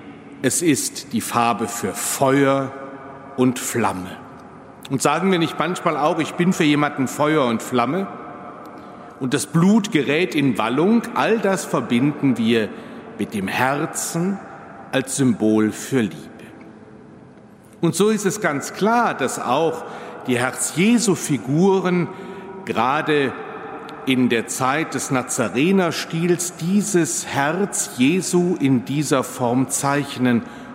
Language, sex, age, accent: German, male, 60-79, German